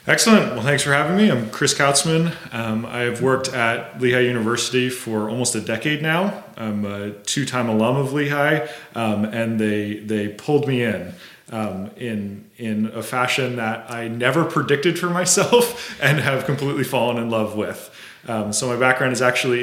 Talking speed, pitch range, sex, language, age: 175 wpm, 115-155 Hz, male, English, 30-49